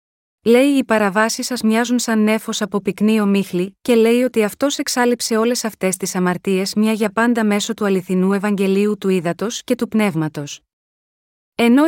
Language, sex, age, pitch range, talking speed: Greek, female, 30-49, 200-240 Hz, 160 wpm